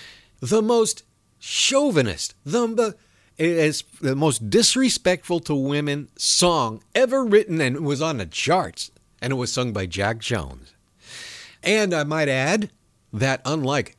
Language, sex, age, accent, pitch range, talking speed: English, male, 50-69, American, 110-175 Hz, 140 wpm